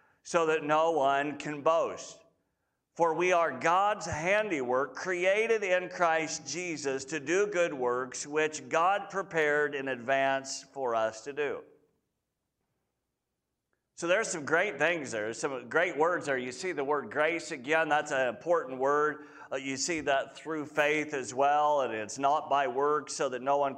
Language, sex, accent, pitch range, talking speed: English, male, American, 145-180 Hz, 160 wpm